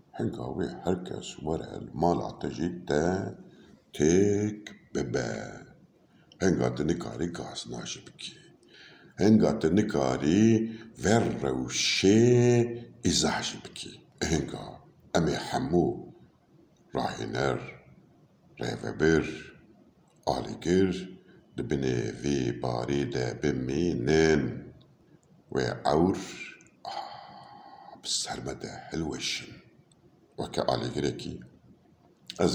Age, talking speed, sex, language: 60-79, 70 wpm, male, Turkish